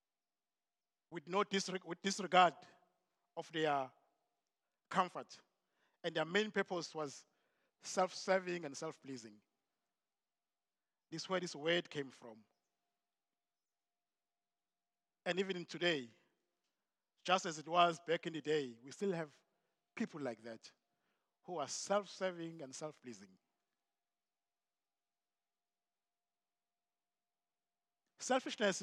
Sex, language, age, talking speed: male, English, 50-69, 90 wpm